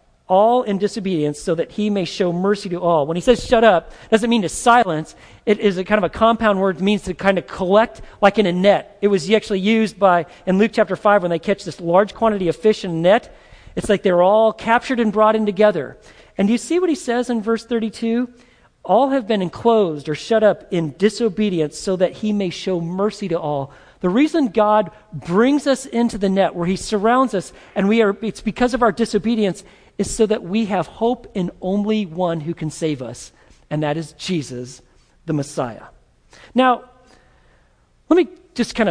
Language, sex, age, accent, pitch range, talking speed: English, male, 40-59, American, 170-225 Hz, 215 wpm